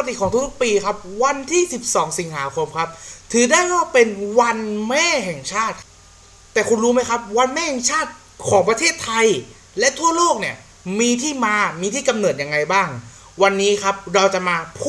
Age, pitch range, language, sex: 20-39, 190-285 Hz, Thai, male